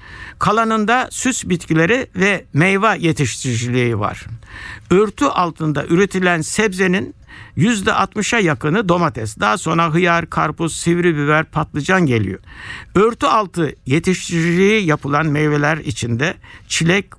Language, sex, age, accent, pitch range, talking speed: Turkish, male, 60-79, native, 135-190 Hz, 100 wpm